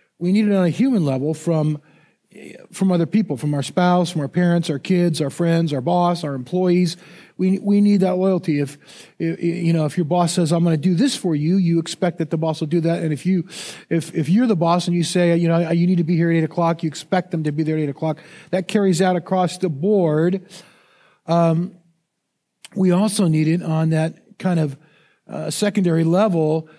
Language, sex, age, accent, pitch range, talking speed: English, male, 40-59, American, 160-190 Hz, 225 wpm